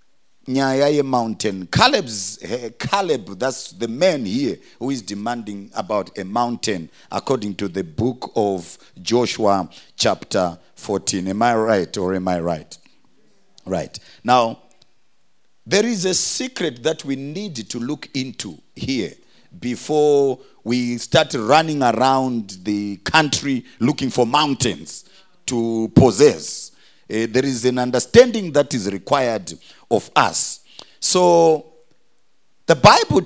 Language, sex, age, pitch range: English, male, 50-69, 115-165 Hz